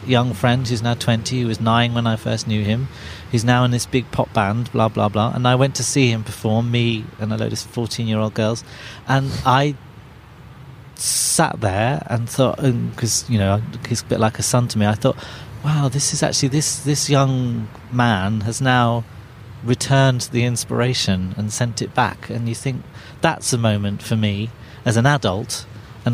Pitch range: 110-130 Hz